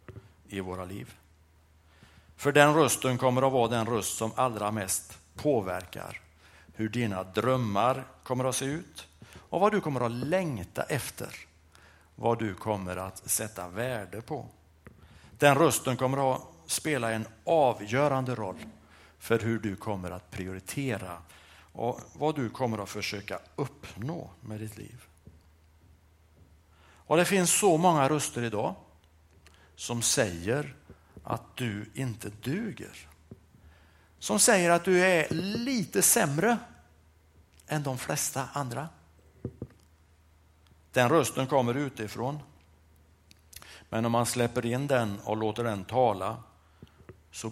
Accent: Norwegian